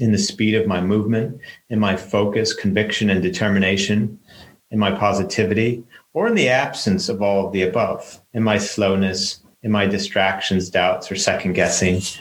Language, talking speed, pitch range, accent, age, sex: English, 165 wpm, 100-120 Hz, American, 40-59, male